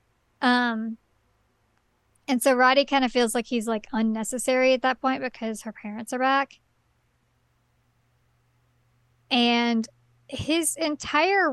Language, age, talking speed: English, 20-39, 115 wpm